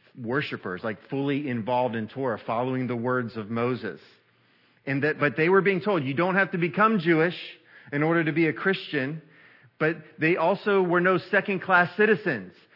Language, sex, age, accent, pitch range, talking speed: English, male, 40-59, American, 135-175 Hz, 175 wpm